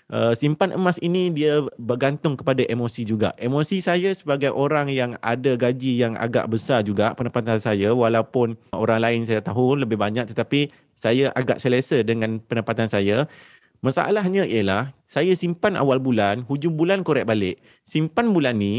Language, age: Malay, 30-49